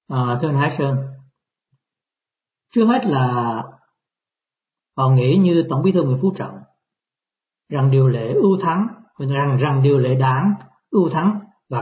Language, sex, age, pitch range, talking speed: Vietnamese, male, 60-79, 130-180 Hz, 150 wpm